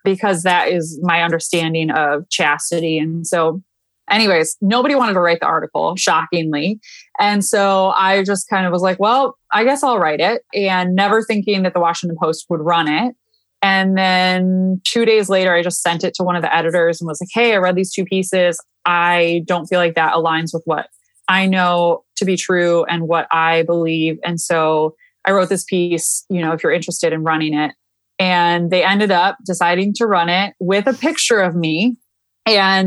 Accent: American